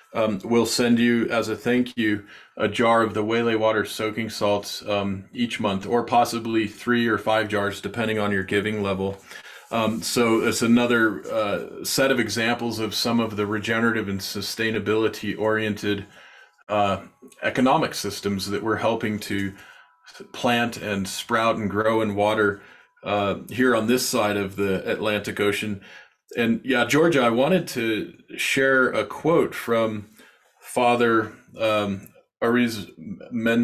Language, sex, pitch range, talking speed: English, male, 105-120 Hz, 145 wpm